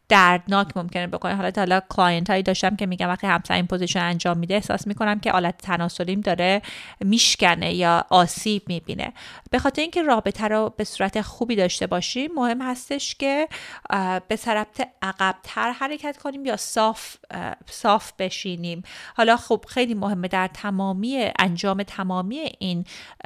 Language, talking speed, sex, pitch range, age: Persian, 150 wpm, female, 190-245 Hz, 30-49